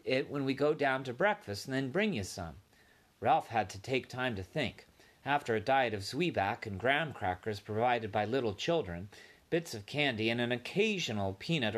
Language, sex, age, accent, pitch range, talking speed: English, male, 40-59, American, 115-190 Hz, 195 wpm